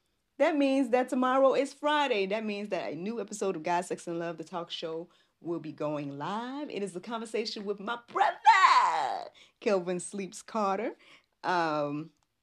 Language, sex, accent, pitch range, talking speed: English, female, American, 155-210 Hz, 170 wpm